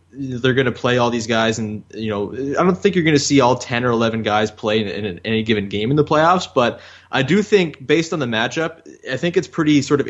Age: 20-39